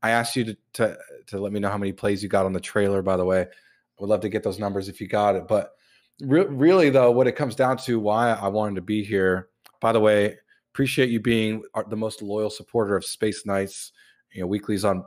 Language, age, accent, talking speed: English, 30-49, American, 250 wpm